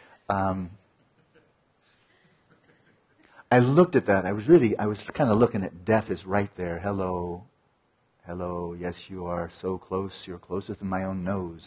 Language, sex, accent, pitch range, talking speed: English, female, American, 95-125 Hz, 160 wpm